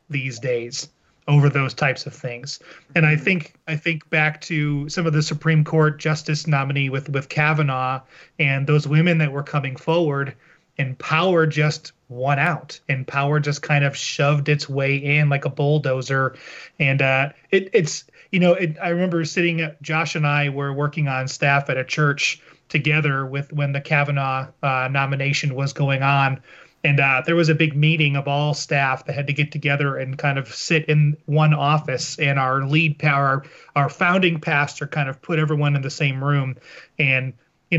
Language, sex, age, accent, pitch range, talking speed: English, male, 30-49, American, 140-155 Hz, 185 wpm